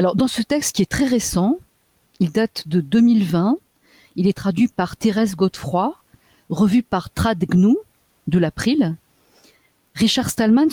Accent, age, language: French, 50-69, French